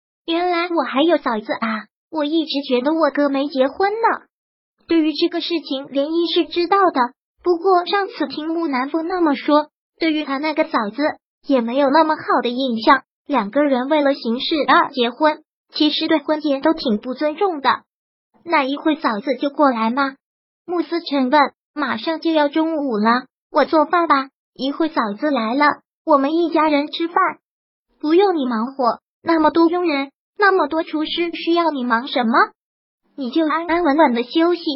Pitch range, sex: 270-330 Hz, male